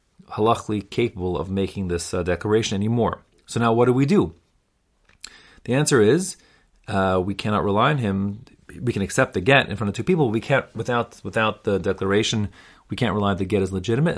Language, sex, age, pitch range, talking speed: English, male, 30-49, 95-125 Hz, 205 wpm